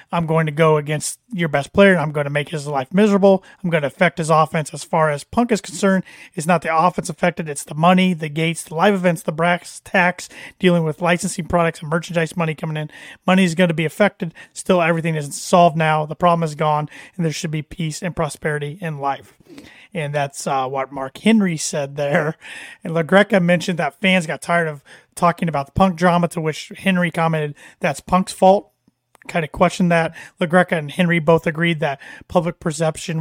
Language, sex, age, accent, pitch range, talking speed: English, male, 30-49, American, 155-180 Hz, 215 wpm